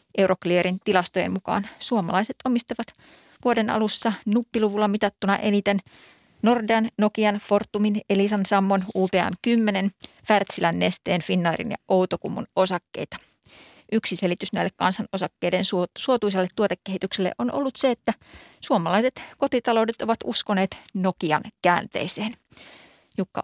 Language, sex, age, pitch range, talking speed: Finnish, female, 30-49, 185-225 Hz, 100 wpm